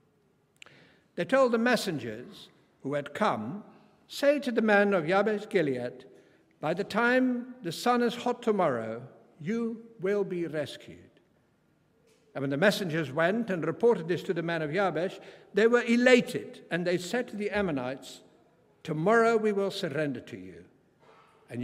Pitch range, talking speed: 170-225 Hz, 150 wpm